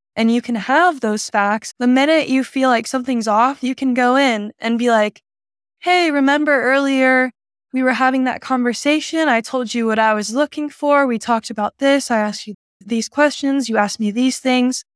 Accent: American